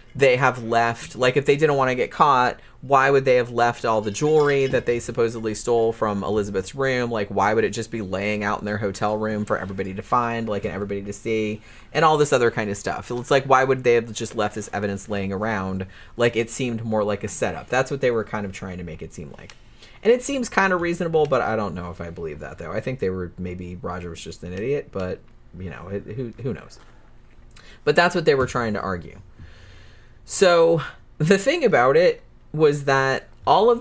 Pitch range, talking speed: 105-145 Hz, 235 wpm